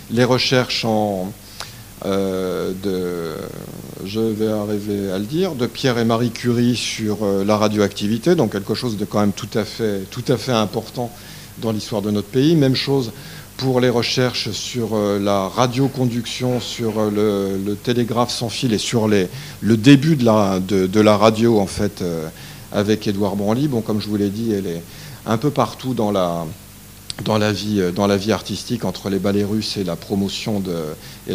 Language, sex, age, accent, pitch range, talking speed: French, male, 50-69, French, 100-125 Hz, 185 wpm